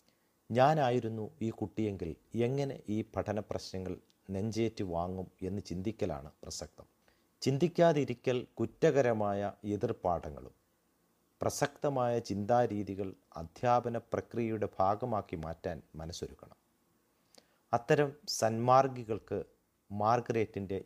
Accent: native